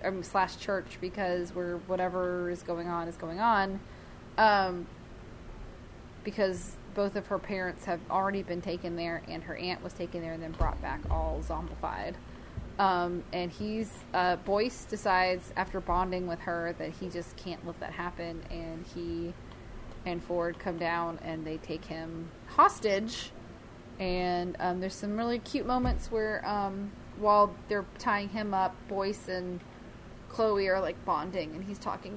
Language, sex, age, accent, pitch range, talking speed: English, female, 20-39, American, 180-220 Hz, 160 wpm